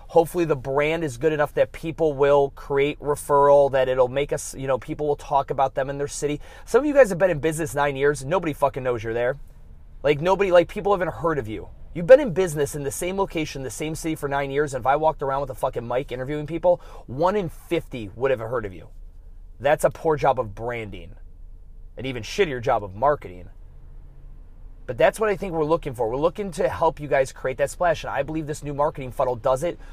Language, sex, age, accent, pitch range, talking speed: English, male, 30-49, American, 125-165 Hz, 240 wpm